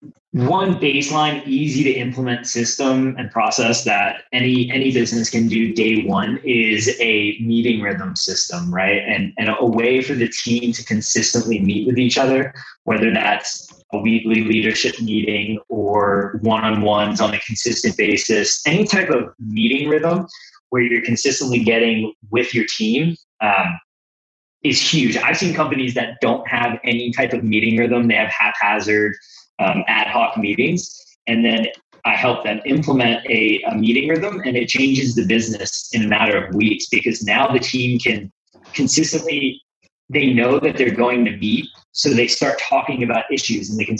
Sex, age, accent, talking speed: male, 20-39, American, 165 wpm